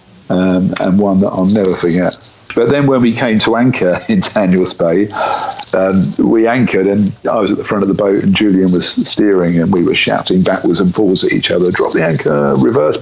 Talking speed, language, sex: 215 wpm, English, male